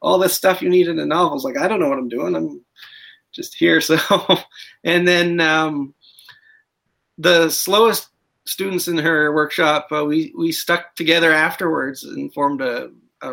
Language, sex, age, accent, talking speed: English, male, 30-49, American, 175 wpm